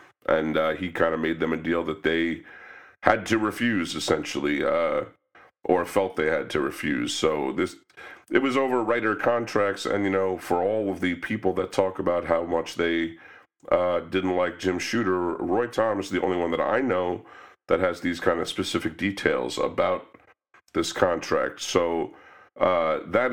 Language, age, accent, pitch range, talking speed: English, 40-59, American, 85-115 Hz, 180 wpm